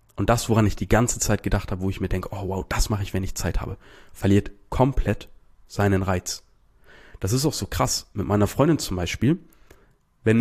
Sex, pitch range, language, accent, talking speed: male, 95-110 Hz, German, German, 215 wpm